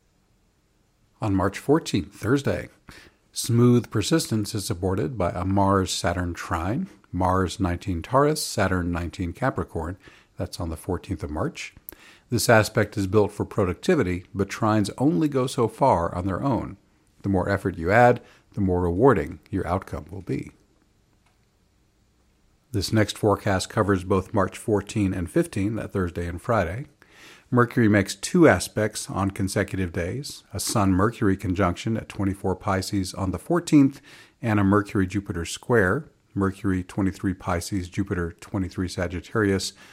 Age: 50-69